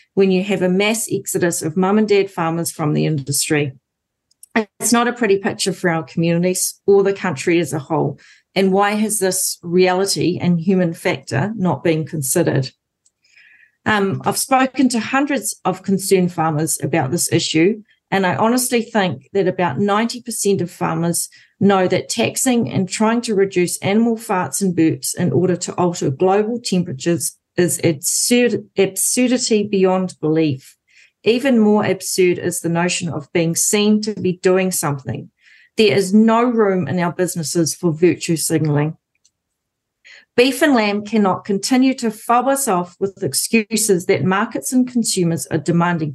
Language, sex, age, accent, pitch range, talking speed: English, female, 40-59, Australian, 170-210 Hz, 155 wpm